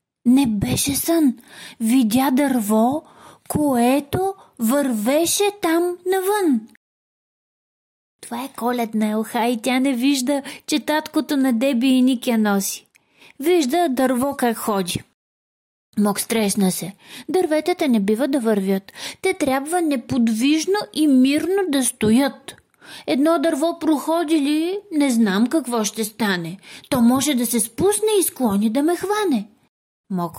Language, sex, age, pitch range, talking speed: Bulgarian, female, 30-49, 225-320 Hz, 130 wpm